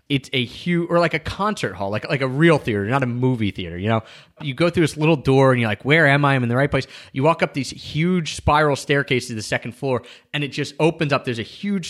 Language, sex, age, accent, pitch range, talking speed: English, male, 30-49, American, 125-155 Hz, 270 wpm